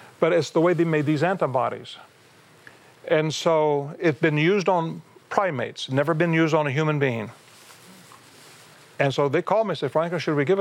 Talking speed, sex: 180 wpm, male